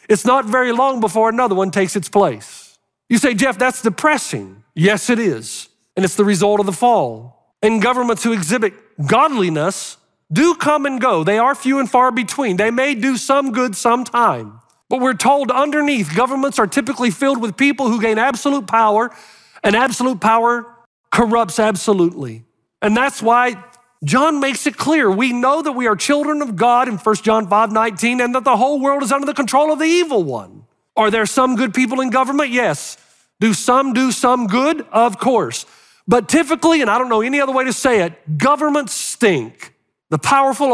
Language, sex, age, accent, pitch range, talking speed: English, male, 40-59, American, 220-275 Hz, 190 wpm